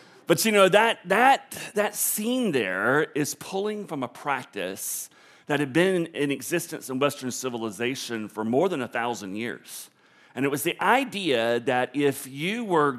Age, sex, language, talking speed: 40-59, male, English, 165 wpm